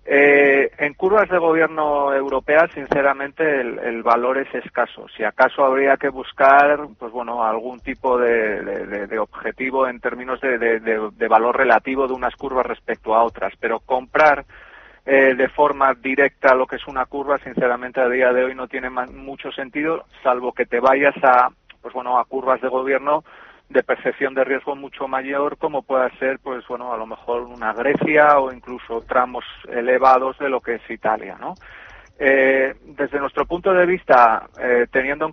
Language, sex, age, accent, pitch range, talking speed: Spanish, male, 30-49, Spanish, 125-140 Hz, 180 wpm